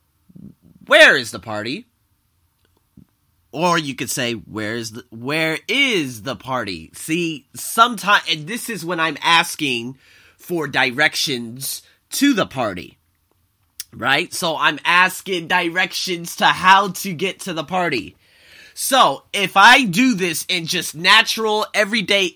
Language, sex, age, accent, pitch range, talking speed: English, male, 20-39, American, 130-205 Hz, 130 wpm